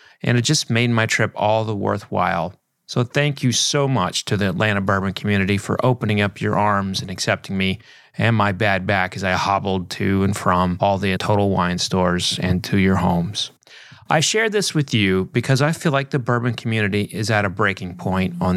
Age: 30-49